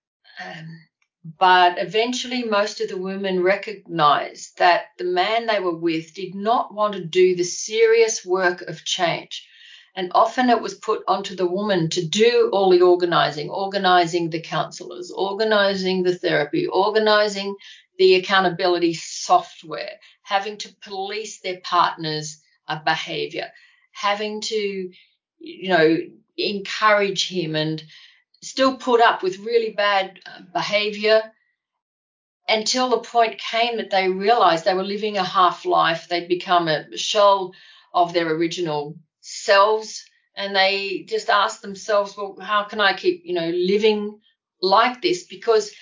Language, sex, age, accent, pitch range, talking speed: English, female, 50-69, Australian, 180-230 Hz, 135 wpm